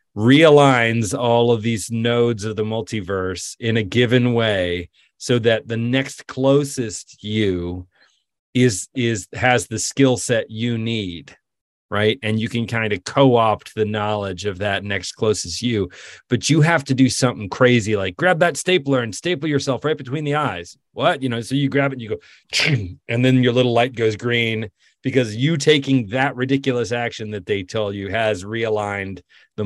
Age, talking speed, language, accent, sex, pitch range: 30-49, 180 wpm, English, American, male, 105-130 Hz